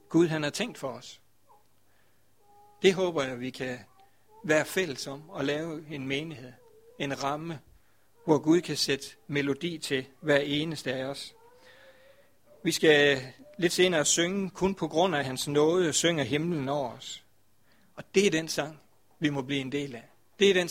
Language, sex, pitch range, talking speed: Danish, male, 135-170 Hz, 175 wpm